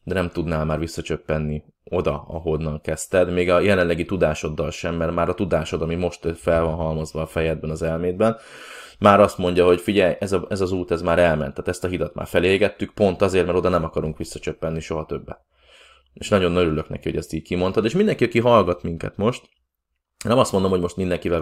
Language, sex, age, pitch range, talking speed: Hungarian, male, 20-39, 80-95 Hz, 210 wpm